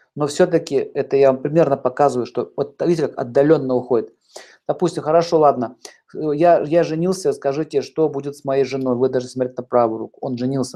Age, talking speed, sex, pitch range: 50-69, 185 wpm, male, 130-170 Hz